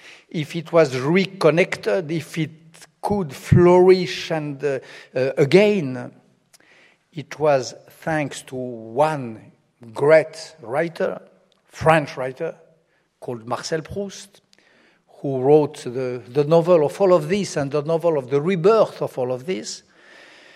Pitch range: 130-170 Hz